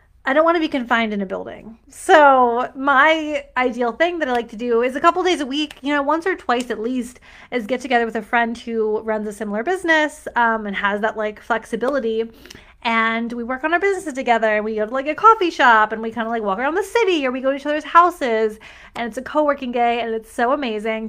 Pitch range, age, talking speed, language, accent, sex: 225-290 Hz, 20-39, 255 wpm, English, American, female